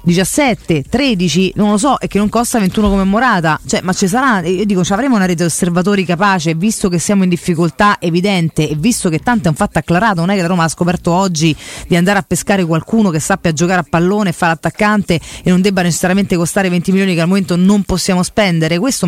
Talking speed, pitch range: 235 wpm, 170-215 Hz